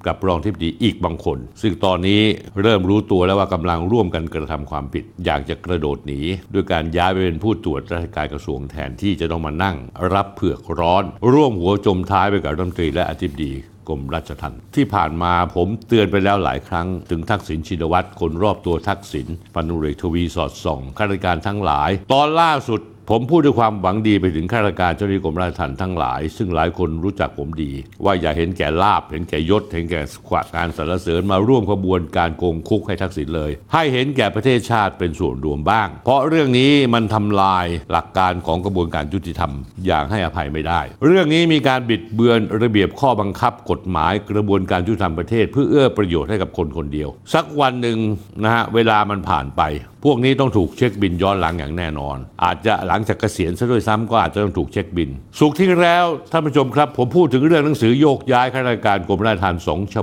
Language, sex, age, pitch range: Thai, male, 60-79, 85-110 Hz